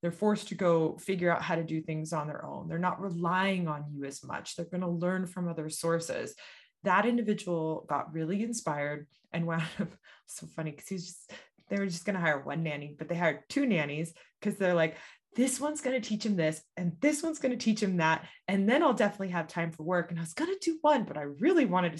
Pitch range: 165-220 Hz